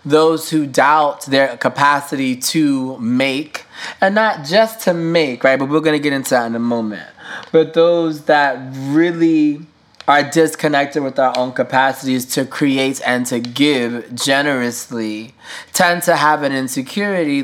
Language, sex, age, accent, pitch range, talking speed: English, male, 20-39, American, 125-155 Hz, 150 wpm